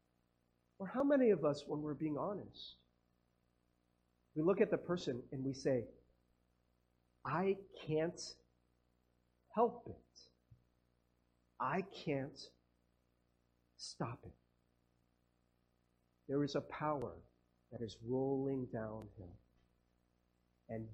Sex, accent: male, American